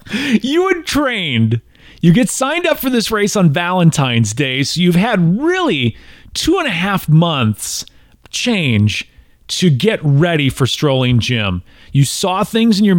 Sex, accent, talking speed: male, American, 155 wpm